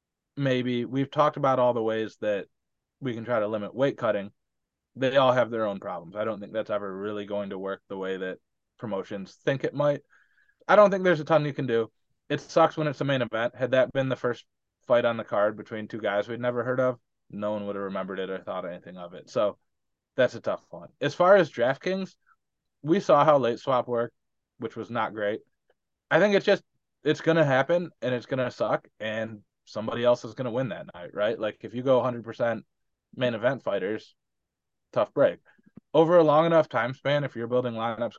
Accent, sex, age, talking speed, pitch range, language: American, male, 20-39, 225 wpm, 105-145 Hz, English